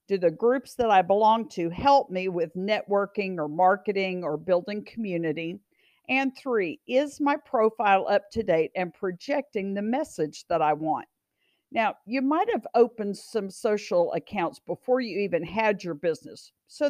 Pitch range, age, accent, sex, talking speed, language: 175-260 Hz, 50-69, American, female, 165 wpm, English